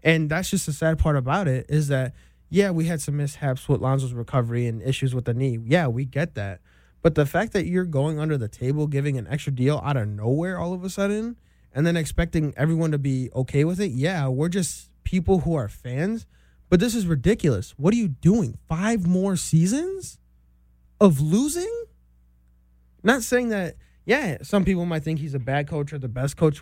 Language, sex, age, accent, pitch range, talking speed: English, male, 20-39, American, 130-175 Hz, 205 wpm